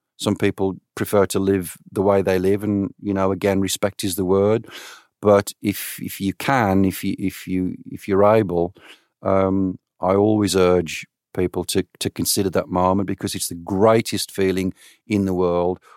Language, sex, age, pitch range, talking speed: English, male, 40-59, 90-105 Hz, 175 wpm